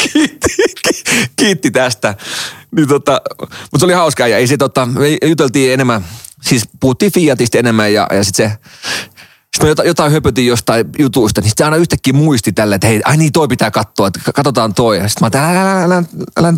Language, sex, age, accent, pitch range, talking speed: Finnish, male, 30-49, native, 110-150 Hz, 155 wpm